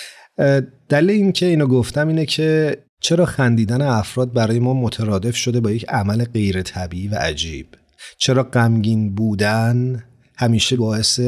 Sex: male